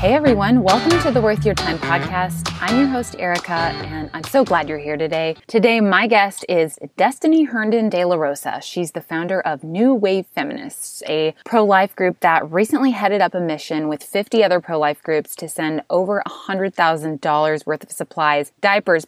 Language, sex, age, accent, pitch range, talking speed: English, female, 20-39, American, 160-210 Hz, 180 wpm